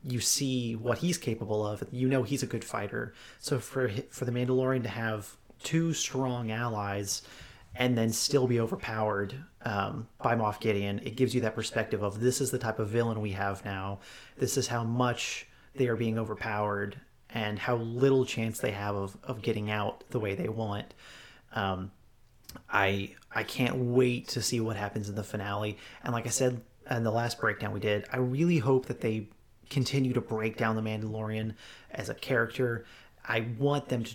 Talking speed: 190 wpm